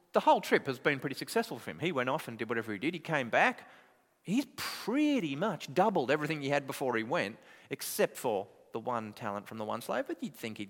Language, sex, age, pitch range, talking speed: English, male, 30-49, 110-175 Hz, 240 wpm